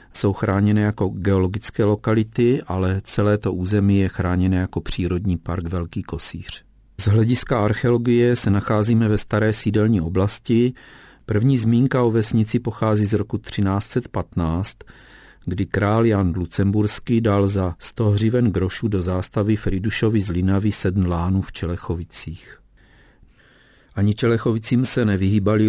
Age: 50-69